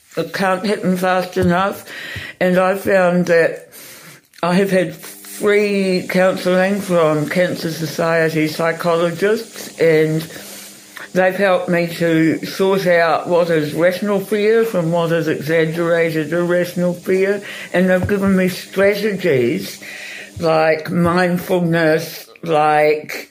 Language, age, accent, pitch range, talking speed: English, 60-79, British, 160-195 Hz, 110 wpm